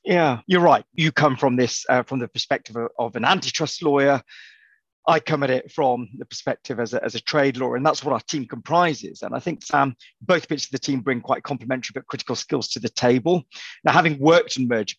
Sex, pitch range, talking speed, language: male, 125-155 Hz, 230 wpm, English